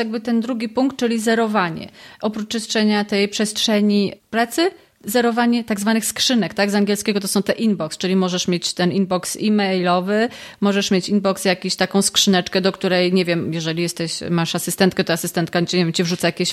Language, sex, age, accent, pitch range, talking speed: Polish, female, 30-49, native, 195-245 Hz, 165 wpm